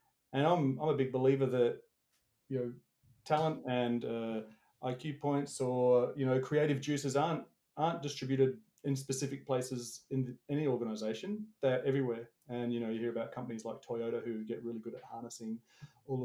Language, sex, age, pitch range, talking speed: English, male, 30-49, 120-140 Hz, 170 wpm